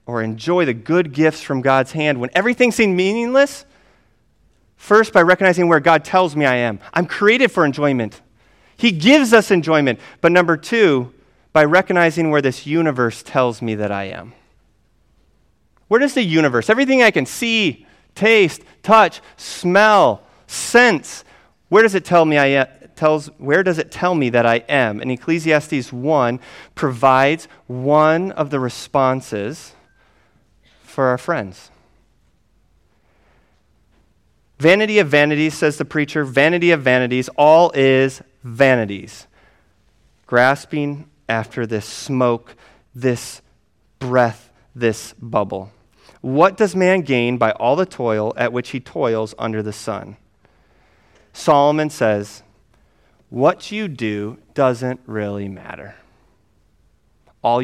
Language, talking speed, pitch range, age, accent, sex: English, 130 wpm, 115-170 Hz, 30-49, American, male